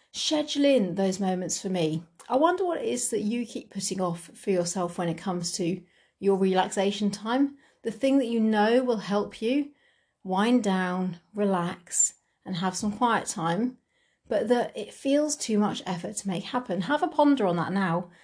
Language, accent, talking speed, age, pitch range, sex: English, British, 190 wpm, 40-59, 180-240 Hz, female